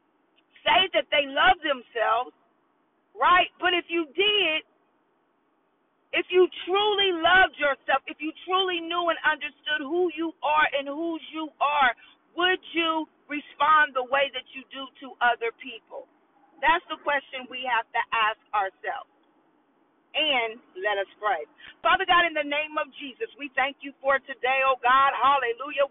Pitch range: 270-335 Hz